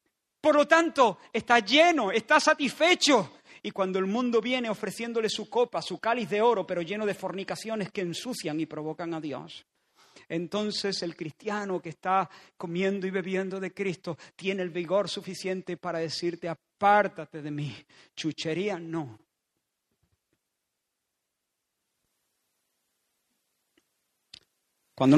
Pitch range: 165-210 Hz